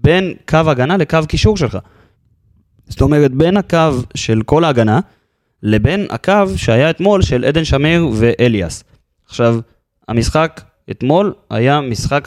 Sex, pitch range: male, 110-155 Hz